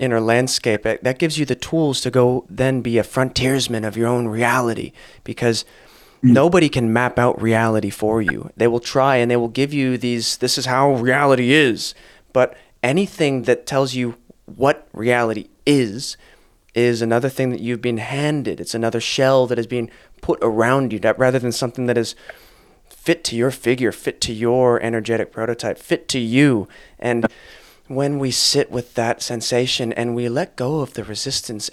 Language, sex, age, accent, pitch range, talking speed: English, male, 30-49, American, 115-140 Hz, 180 wpm